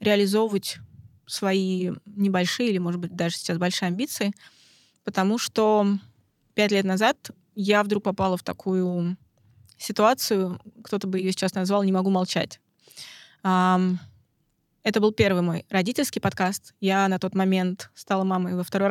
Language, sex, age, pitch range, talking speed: Russian, female, 20-39, 185-210 Hz, 135 wpm